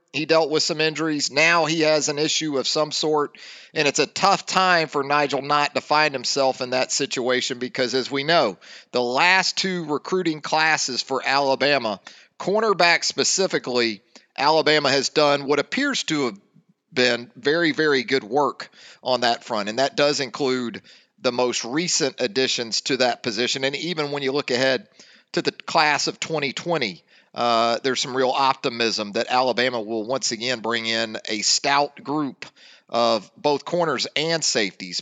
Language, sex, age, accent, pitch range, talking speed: English, male, 40-59, American, 130-160 Hz, 165 wpm